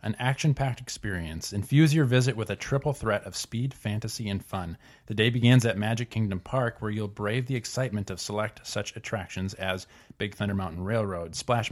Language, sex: English, male